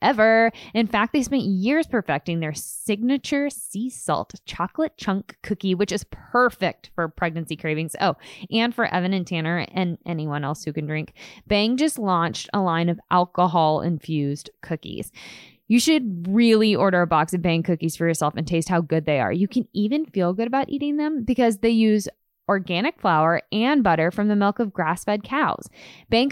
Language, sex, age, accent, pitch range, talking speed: English, female, 20-39, American, 180-245 Hz, 180 wpm